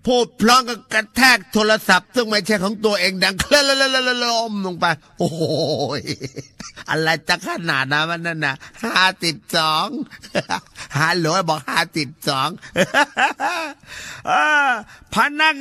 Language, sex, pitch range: Thai, male, 150-210 Hz